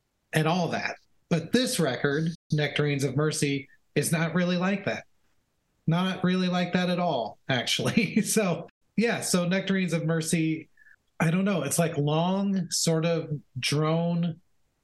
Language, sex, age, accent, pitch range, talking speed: English, male, 30-49, American, 140-175 Hz, 145 wpm